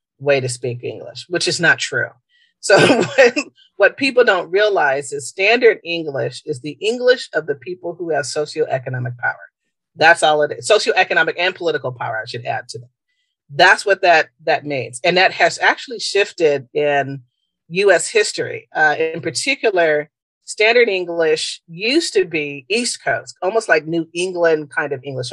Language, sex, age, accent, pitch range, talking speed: English, female, 40-59, American, 140-230 Hz, 165 wpm